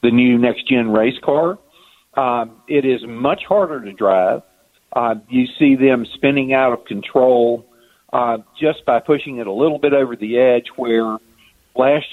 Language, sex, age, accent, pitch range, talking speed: English, male, 50-69, American, 110-130 Hz, 165 wpm